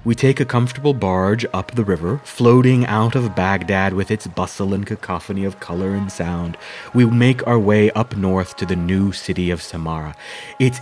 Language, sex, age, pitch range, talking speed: English, male, 30-49, 95-120 Hz, 190 wpm